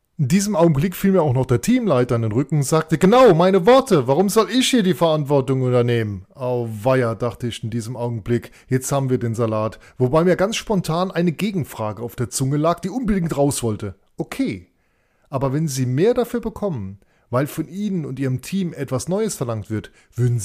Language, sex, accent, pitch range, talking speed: German, male, German, 120-170 Hz, 195 wpm